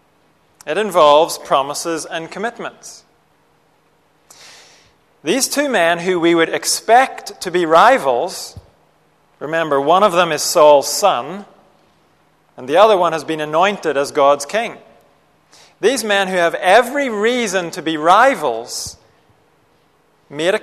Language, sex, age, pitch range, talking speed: French, male, 30-49, 155-200 Hz, 125 wpm